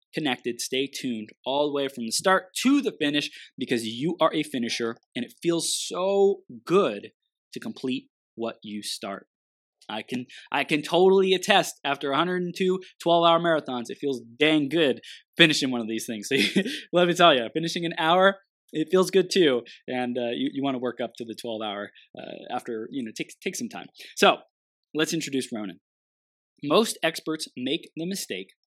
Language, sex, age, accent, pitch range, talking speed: English, male, 20-39, American, 120-175 Hz, 185 wpm